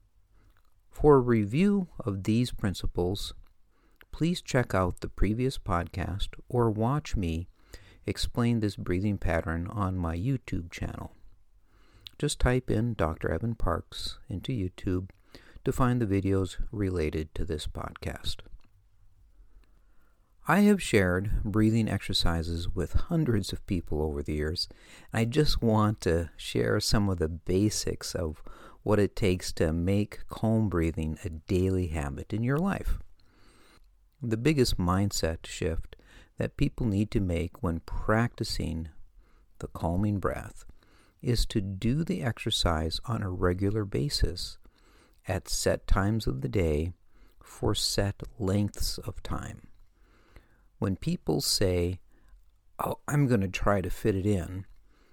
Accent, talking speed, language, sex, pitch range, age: American, 130 wpm, English, male, 90-110 Hz, 50-69